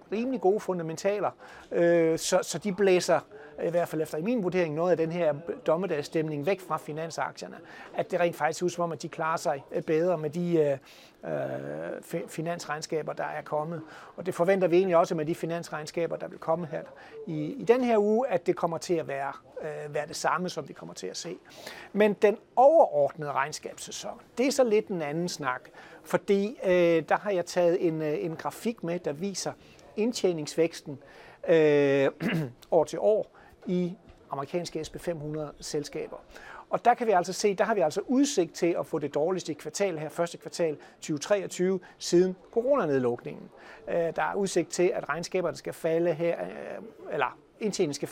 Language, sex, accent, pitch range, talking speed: Danish, male, native, 155-185 Hz, 170 wpm